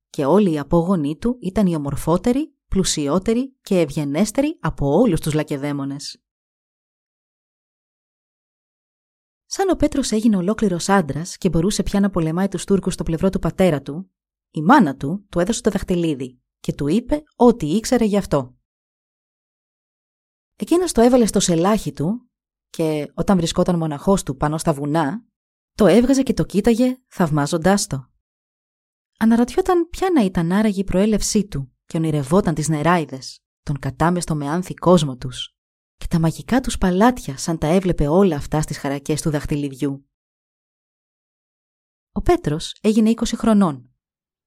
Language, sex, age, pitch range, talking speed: Greek, female, 30-49, 150-215 Hz, 140 wpm